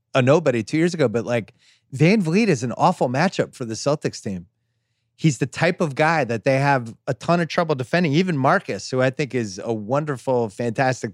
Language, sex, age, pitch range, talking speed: English, male, 30-49, 115-145 Hz, 210 wpm